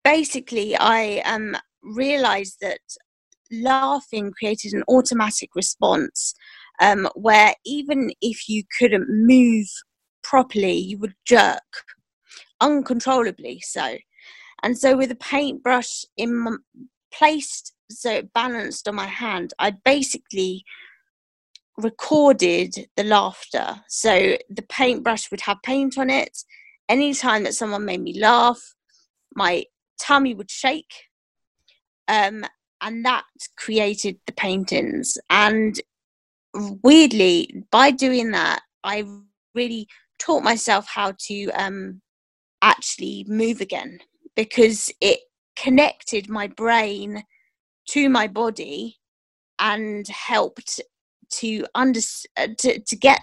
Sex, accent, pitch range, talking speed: female, British, 210-270 Hz, 110 wpm